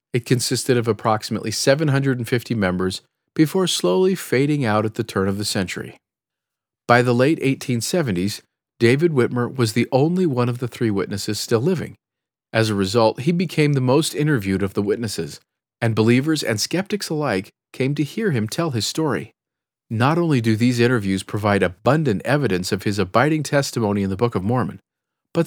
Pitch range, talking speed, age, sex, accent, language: 110-145 Hz, 170 wpm, 40-59, male, American, English